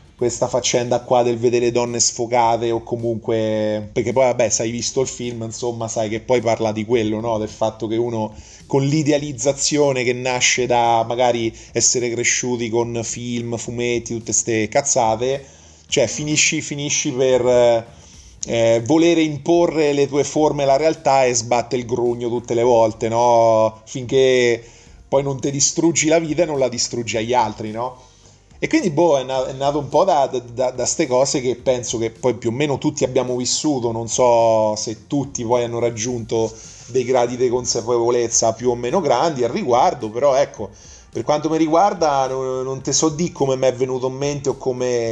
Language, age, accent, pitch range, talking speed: Italian, 30-49, native, 115-135 Hz, 175 wpm